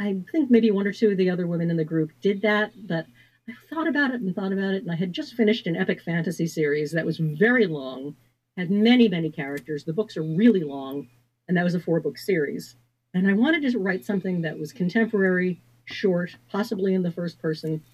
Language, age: English, 50-69